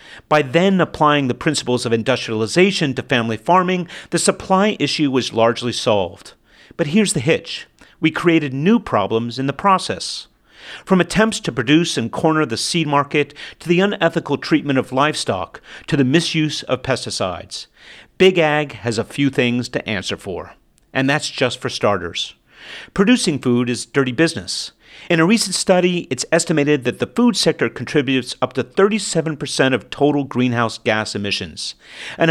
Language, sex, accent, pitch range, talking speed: English, male, American, 125-170 Hz, 160 wpm